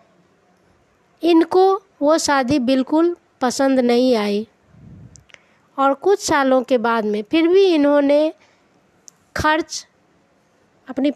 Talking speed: 95 wpm